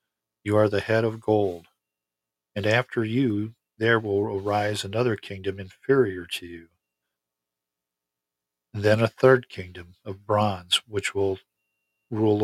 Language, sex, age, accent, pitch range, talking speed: English, male, 50-69, American, 90-115 Hz, 125 wpm